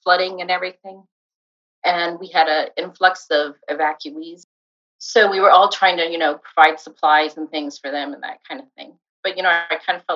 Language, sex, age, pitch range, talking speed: English, female, 40-59, 155-195 Hz, 215 wpm